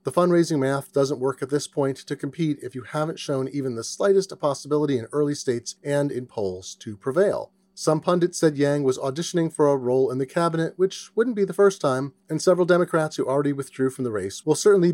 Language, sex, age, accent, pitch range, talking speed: English, male, 30-49, American, 130-170 Hz, 225 wpm